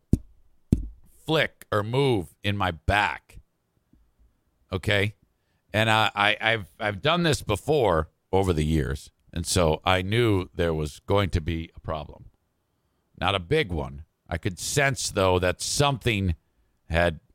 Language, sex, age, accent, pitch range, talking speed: English, male, 50-69, American, 85-105 Hz, 135 wpm